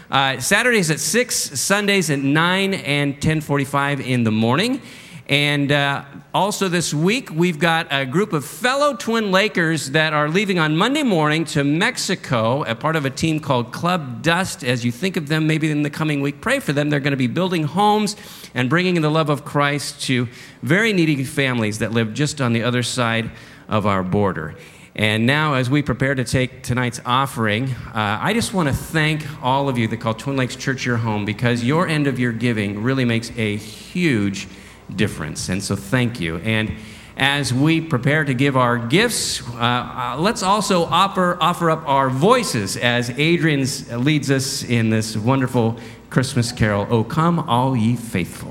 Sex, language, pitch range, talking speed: male, English, 120-165 Hz, 190 wpm